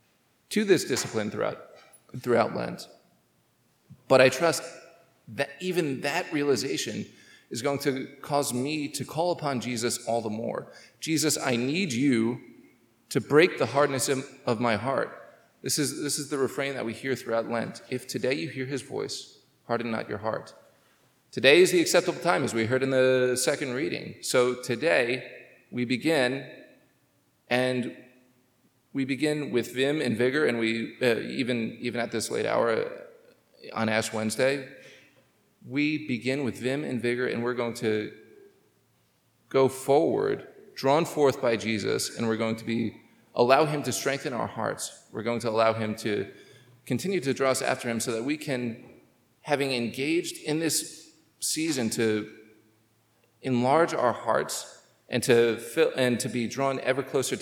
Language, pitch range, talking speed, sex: English, 115-145 Hz, 160 wpm, male